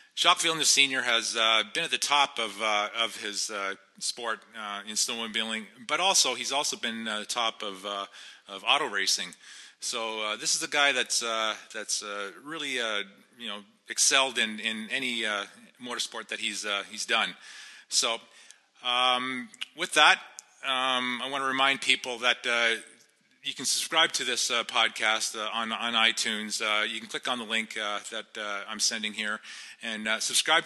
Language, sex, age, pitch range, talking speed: English, male, 30-49, 105-125 Hz, 190 wpm